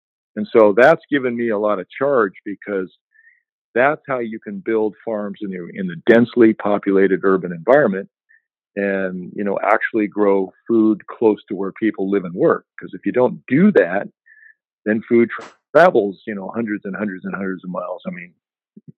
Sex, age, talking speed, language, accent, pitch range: male, 50-69, 185 wpm, English, American, 95-120 Hz